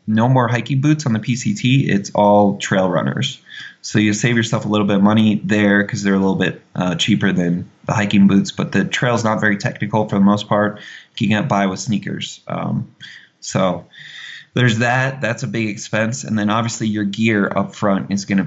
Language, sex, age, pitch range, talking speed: English, male, 20-39, 95-110 Hz, 210 wpm